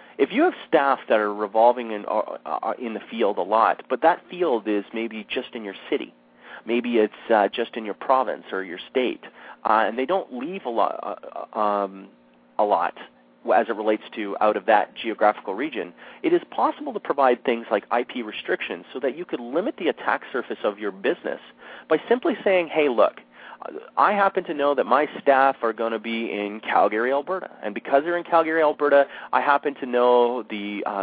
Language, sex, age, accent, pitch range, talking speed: English, male, 30-49, American, 110-150 Hz, 200 wpm